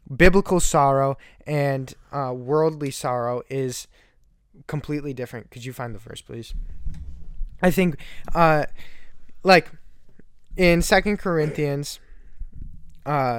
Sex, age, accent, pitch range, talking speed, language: male, 10-29, American, 130-165 Hz, 105 wpm, English